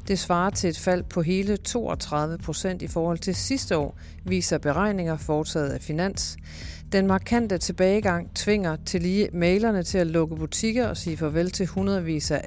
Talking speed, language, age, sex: 175 wpm, Danish, 40-59, female